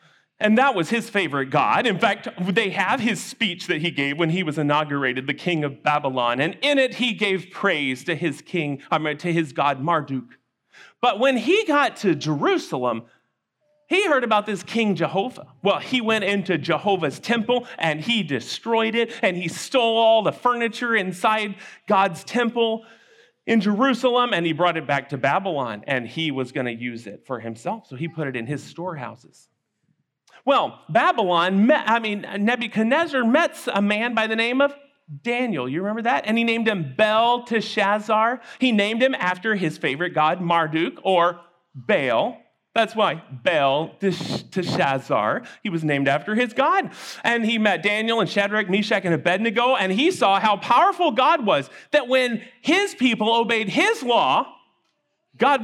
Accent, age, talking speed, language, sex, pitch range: American, 40-59, 170 wpm, English, male, 165-240 Hz